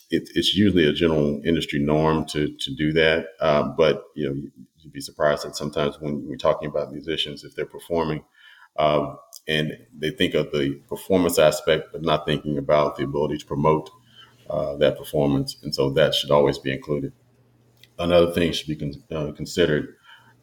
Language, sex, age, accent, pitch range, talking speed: English, male, 30-49, American, 75-80 Hz, 180 wpm